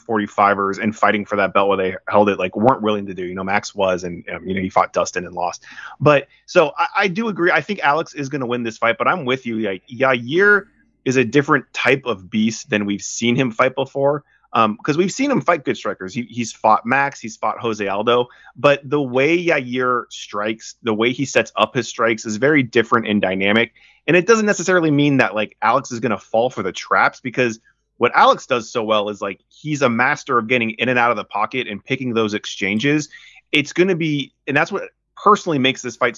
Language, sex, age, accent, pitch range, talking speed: English, male, 30-49, American, 110-135 Hz, 235 wpm